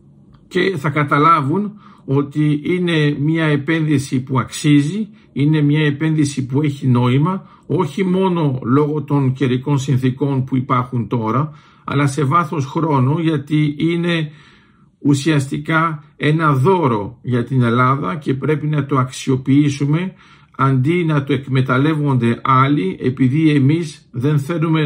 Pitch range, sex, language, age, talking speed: 130-155 Hz, male, Greek, 50-69, 120 wpm